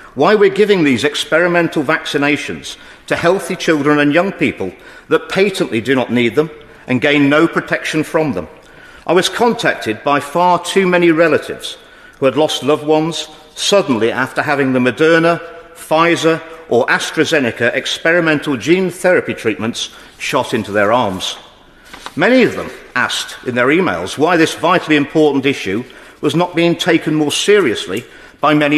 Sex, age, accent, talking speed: male, 50-69, British, 150 wpm